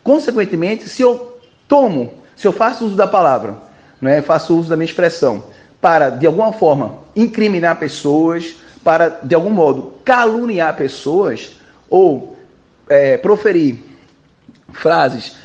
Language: Portuguese